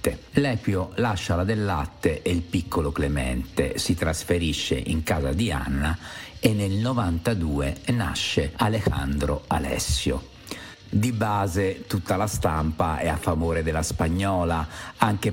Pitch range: 80-105 Hz